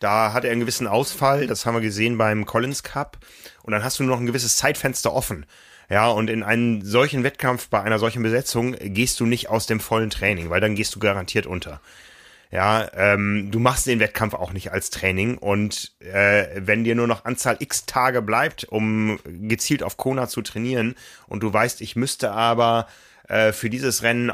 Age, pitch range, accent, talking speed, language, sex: 30-49, 105-125 Hz, German, 200 wpm, German, male